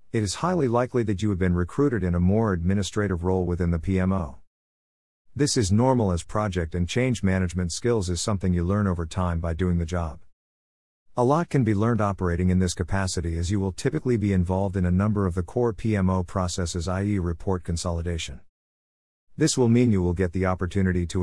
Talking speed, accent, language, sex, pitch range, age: 200 wpm, American, English, male, 85-115 Hz, 50-69